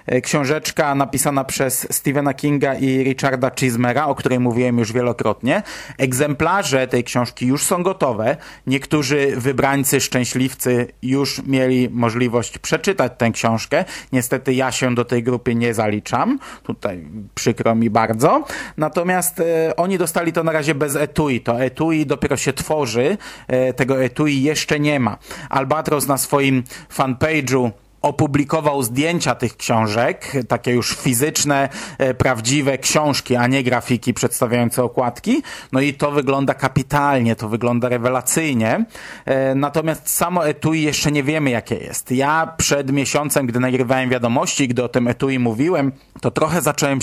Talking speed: 135 wpm